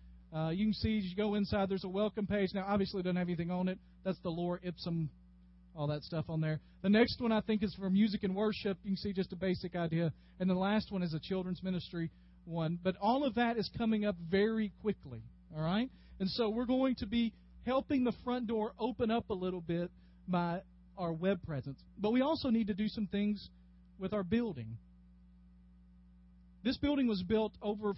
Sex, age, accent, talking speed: male, 40-59, American, 215 wpm